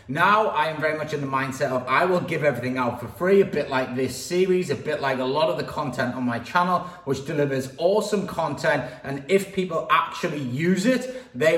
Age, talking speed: 30-49, 225 wpm